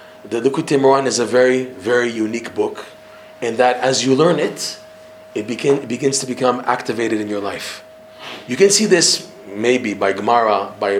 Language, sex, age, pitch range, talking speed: English, male, 40-59, 125-155 Hz, 175 wpm